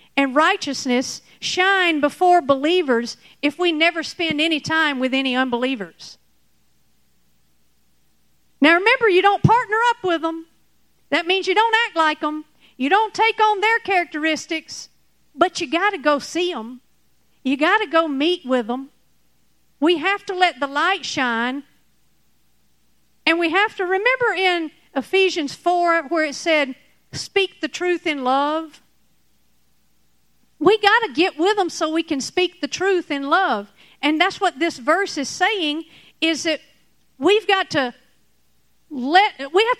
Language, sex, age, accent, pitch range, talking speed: English, female, 50-69, American, 270-365 Hz, 150 wpm